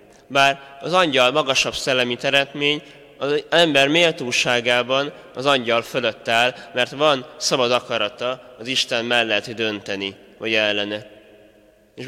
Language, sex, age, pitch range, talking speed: Hungarian, male, 20-39, 110-140 Hz, 120 wpm